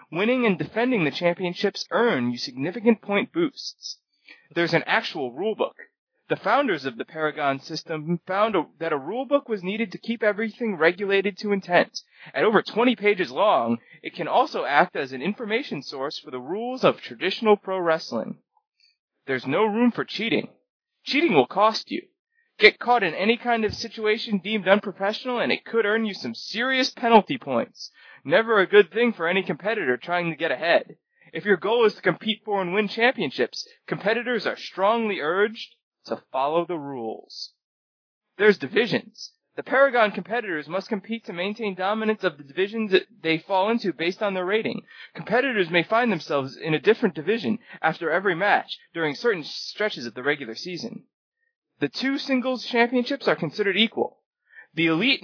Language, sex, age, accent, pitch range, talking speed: English, male, 20-39, American, 175-235 Hz, 170 wpm